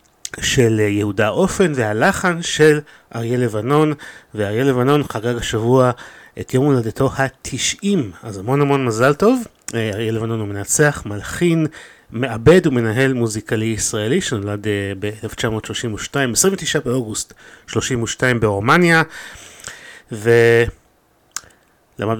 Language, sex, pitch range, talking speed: Hebrew, male, 110-140 Hz, 95 wpm